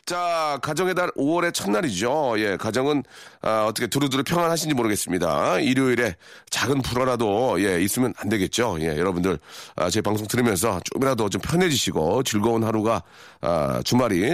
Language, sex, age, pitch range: Korean, male, 40-59, 110-170 Hz